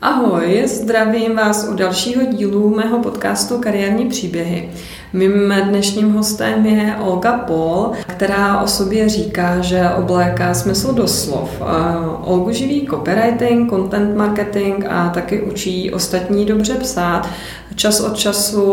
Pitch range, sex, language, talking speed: 175-210 Hz, female, Czech, 125 wpm